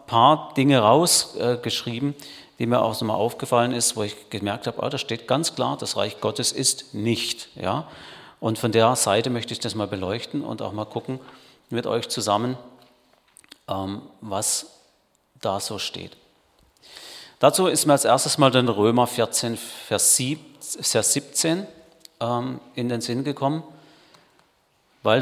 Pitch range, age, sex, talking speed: 115-140 Hz, 40-59, male, 155 wpm